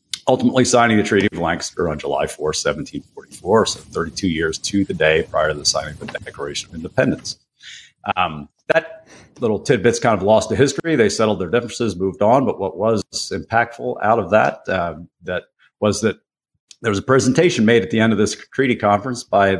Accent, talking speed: American, 200 wpm